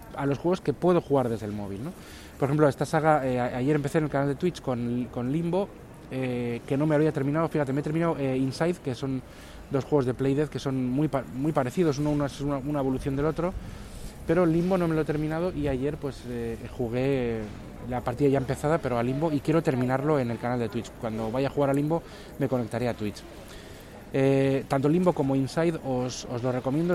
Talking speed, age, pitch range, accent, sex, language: 230 wpm, 20-39, 120-150 Hz, Spanish, male, Spanish